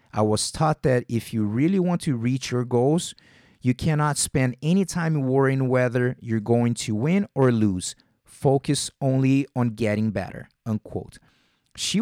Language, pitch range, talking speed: English, 115-150 Hz, 160 wpm